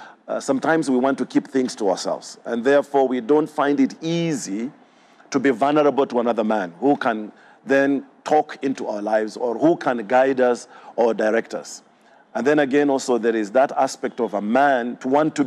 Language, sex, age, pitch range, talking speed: English, male, 50-69, 120-145 Hz, 200 wpm